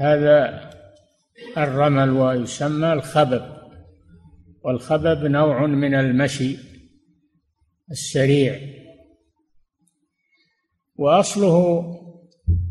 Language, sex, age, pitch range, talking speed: Arabic, male, 60-79, 125-155 Hz, 45 wpm